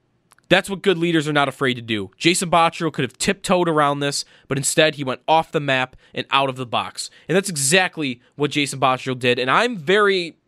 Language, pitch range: English, 130-170 Hz